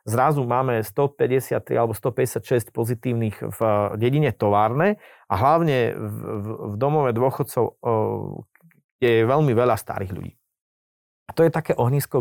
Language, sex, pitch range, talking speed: Slovak, male, 110-150 Hz, 125 wpm